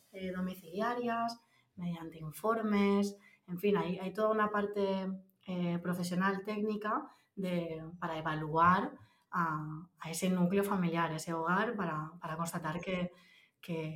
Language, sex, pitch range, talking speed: Spanish, female, 175-205 Hz, 125 wpm